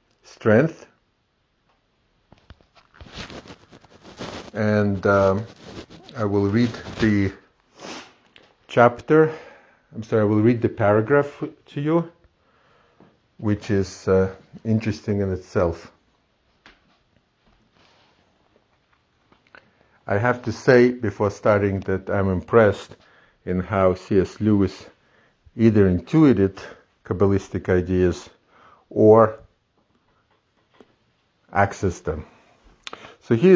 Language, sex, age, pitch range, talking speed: English, male, 50-69, 100-120 Hz, 80 wpm